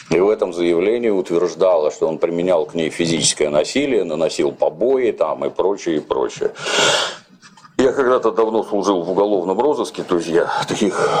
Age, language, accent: 50-69, Russian, native